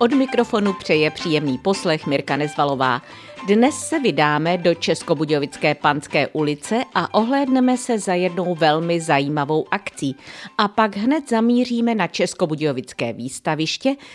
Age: 50-69